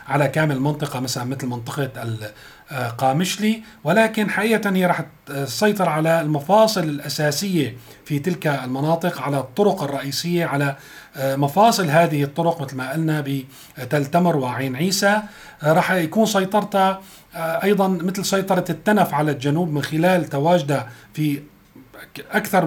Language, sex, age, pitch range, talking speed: Arabic, male, 40-59, 140-175 Hz, 120 wpm